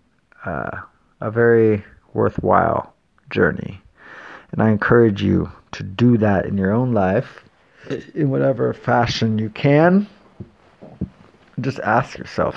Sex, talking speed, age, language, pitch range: male, 115 wpm, 30-49, English, 100-120 Hz